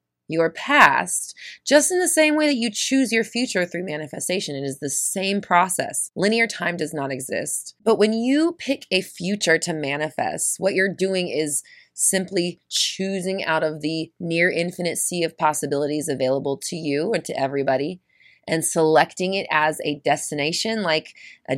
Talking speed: 165 wpm